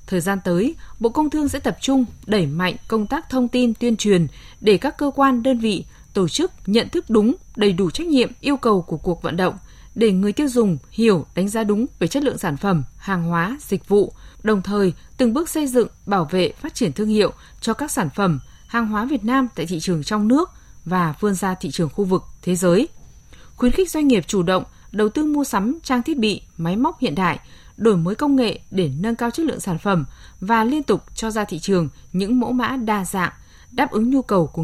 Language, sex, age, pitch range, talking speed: Vietnamese, female, 20-39, 185-255 Hz, 230 wpm